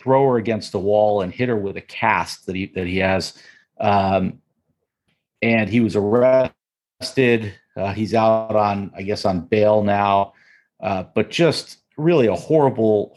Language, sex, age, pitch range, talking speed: English, male, 40-59, 100-120 Hz, 165 wpm